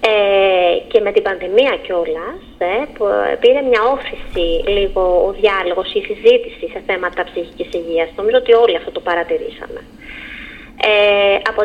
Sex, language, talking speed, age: female, Greek, 120 wpm, 20-39